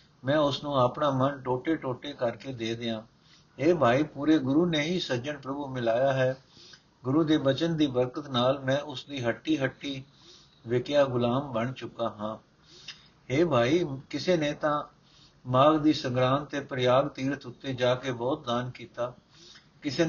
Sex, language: male, Punjabi